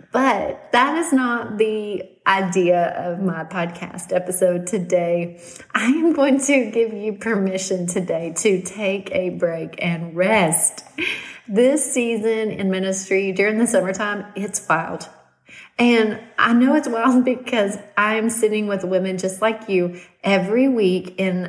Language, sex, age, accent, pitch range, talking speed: English, female, 30-49, American, 180-225 Hz, 140 wpm